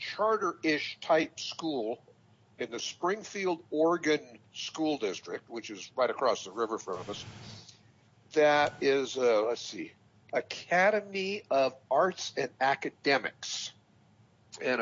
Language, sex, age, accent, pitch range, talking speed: English, male, 60-79, American, 120-160 Hz, 110 wpm